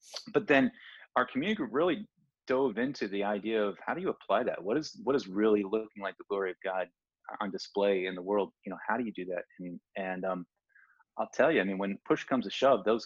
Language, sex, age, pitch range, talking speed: English, male, 30-49, 95-130 Hz, 250 wpm